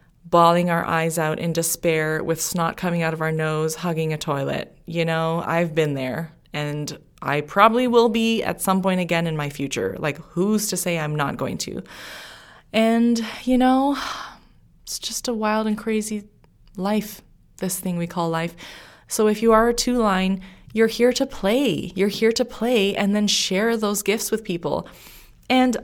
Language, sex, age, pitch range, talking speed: English, female, 20-39, 160-200 Hz, 180 wpm